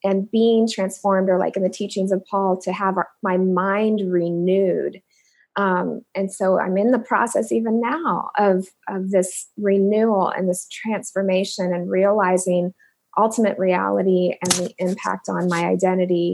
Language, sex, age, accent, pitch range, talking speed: English, female, 20-39, American, 185-215 Hz, 150 wpm